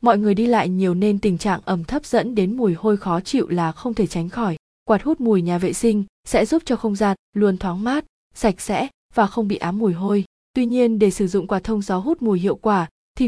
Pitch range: 185-230 Hz